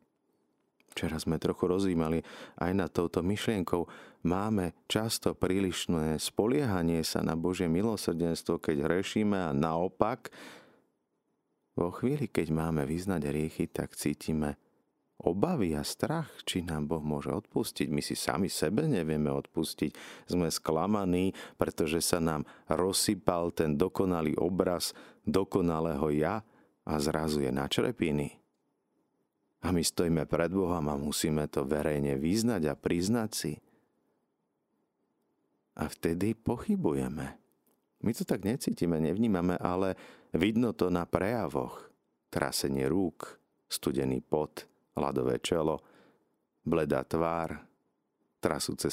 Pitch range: 75-95 Hz